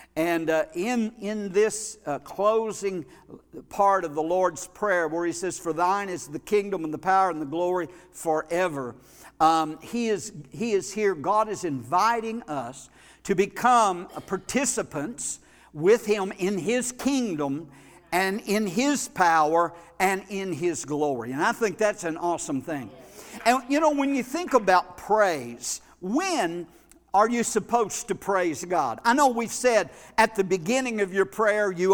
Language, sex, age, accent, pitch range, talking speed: English, male, 60-79, American, 180-235 Hz, 160 wpm